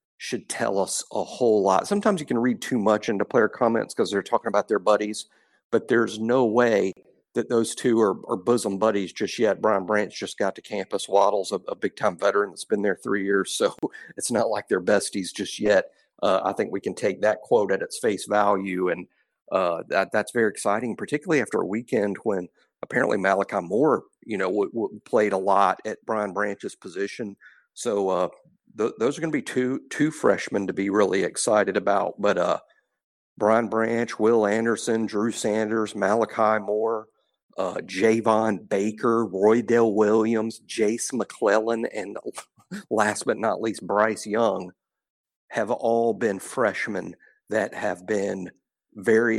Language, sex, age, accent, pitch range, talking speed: English, male, 50-69, American, 105-120 Hz, 175 wpm